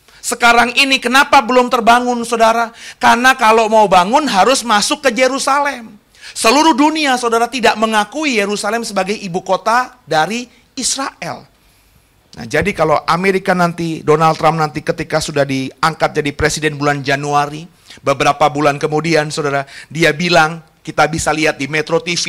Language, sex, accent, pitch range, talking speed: Indonesian, male, native, 145-200 Hz, 140 wpm